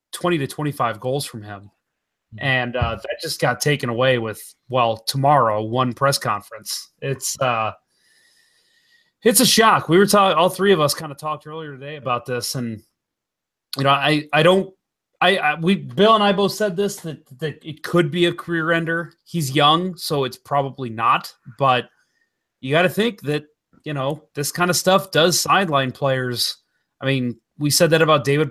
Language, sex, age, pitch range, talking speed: English, male, 30-49, 130-170 Hz, 185 wpm